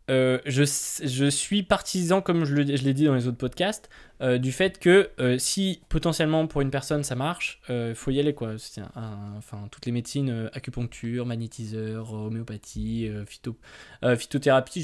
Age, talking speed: 20-39, 195 wpm